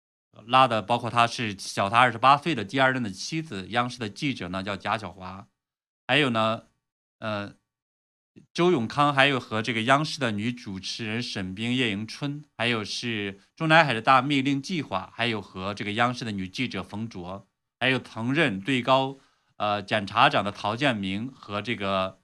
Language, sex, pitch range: Chinese, male, 100-135 Hz